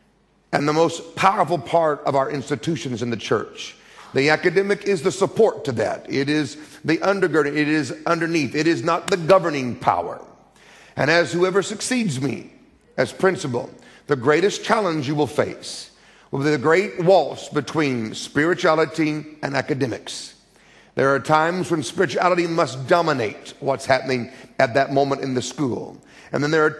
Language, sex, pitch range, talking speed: English, male, 140-170 Hz, 160 wpm